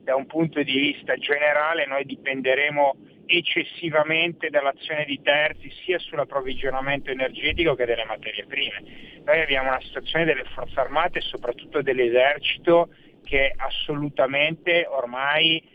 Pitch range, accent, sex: 130-160 Hz, native, male